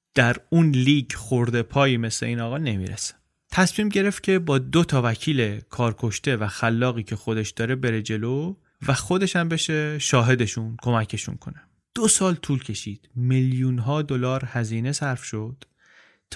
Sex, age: male, 30-49